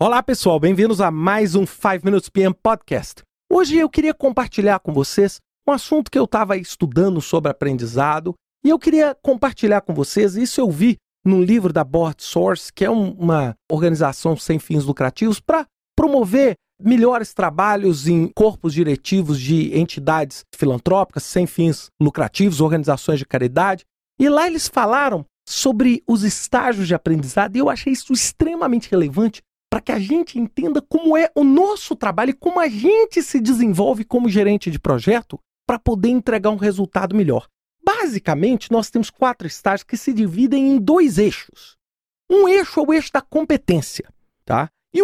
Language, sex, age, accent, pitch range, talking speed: Portuguese, male, 40-59, Brazilian, 180-280 Hz, 160 wpm